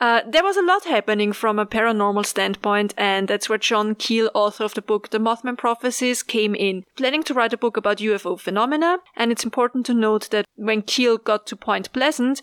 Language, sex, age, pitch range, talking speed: English, female, 30-49, 205-250 Hz, 210 wpm